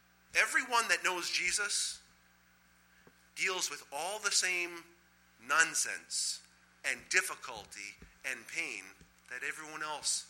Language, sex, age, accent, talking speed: English, male, 40-59, American, 100 wpm